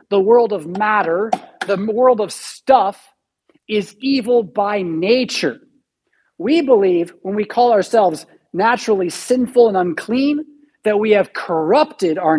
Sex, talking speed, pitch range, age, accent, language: male, 130 wpm, 195-255 Hz, 50-69, American, English